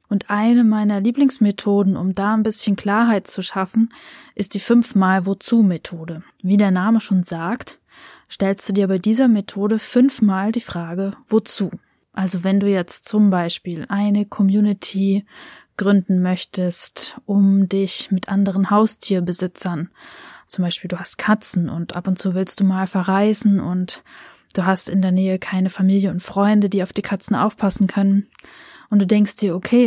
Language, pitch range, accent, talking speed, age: German, 185-215 Hz, German, 160 wpm, 20-39